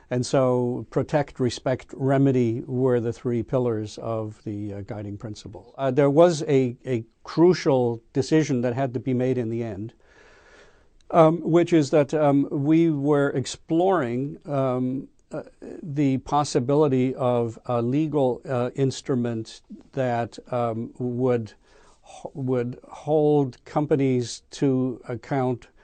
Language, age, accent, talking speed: English, 50-69, American, 125 wpm